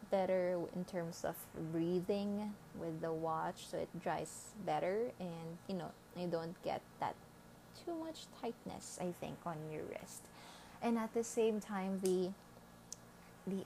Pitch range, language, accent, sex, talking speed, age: 180-225 Hz, English, Filipino, female, 150 wpm, 20-39